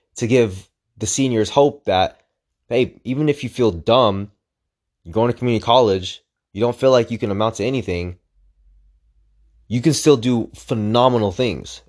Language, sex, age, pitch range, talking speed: English, male, 20-39, 100-135 Hz, 160 wpm